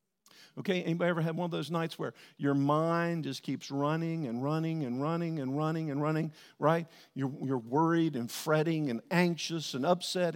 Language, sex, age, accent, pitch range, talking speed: English, male, 50-69, American, 160-225 Hz, 185 wpm